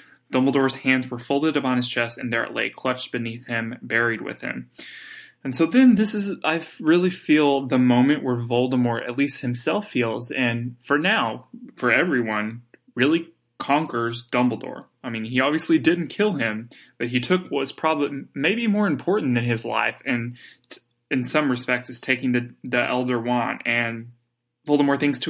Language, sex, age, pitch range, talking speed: English, male, 20-39, 120-145 Hz, 175 wpm